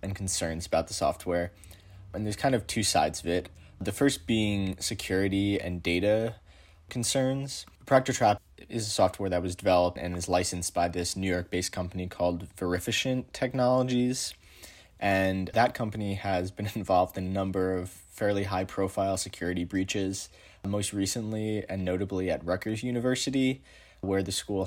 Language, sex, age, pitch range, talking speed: English, male, 20-39, 90-105 Hz, 150 wpm